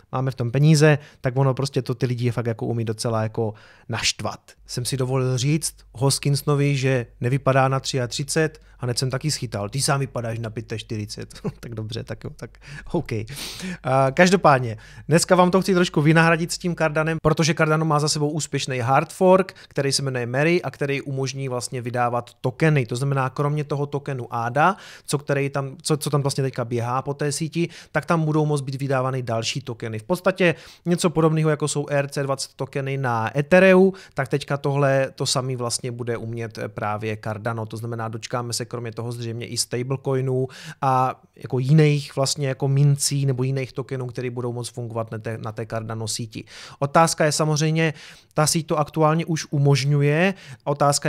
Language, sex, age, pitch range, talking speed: Czech, male, 30-49, 125-155 Hz, 180 wpm